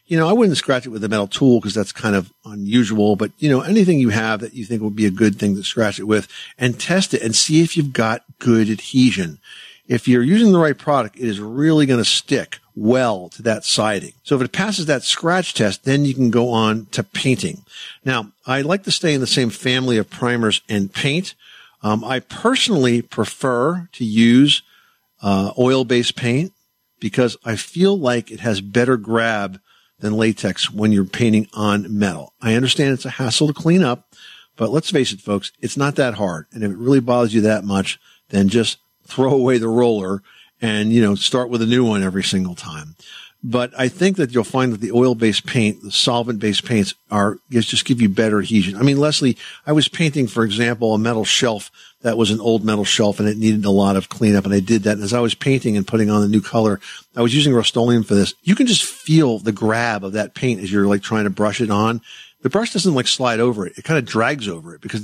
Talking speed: 225 wpm